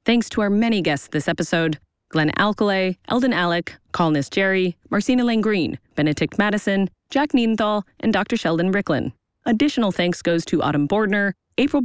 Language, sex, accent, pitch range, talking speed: English, female, American, 170-240 Hz, 150 wpm